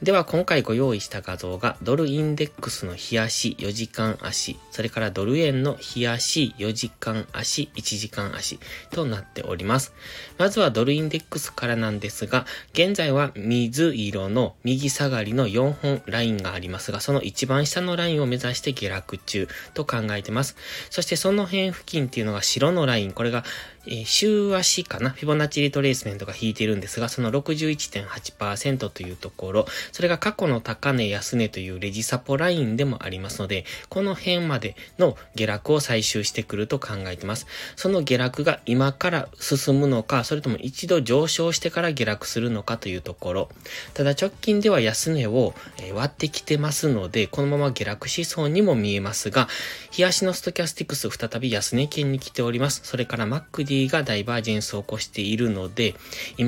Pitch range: 110-150 Hz